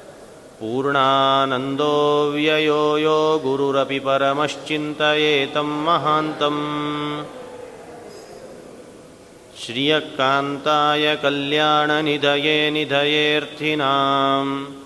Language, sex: Kannada, male